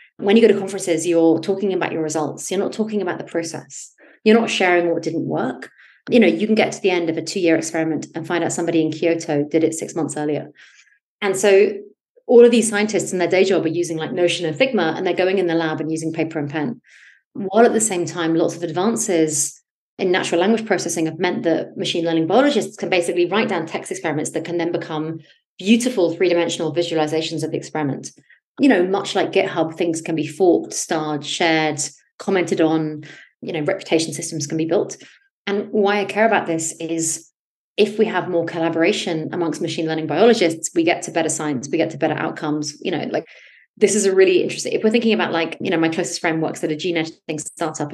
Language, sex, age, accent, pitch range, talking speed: English, female, 30-49, British, 160-195 Hz, 220 wpm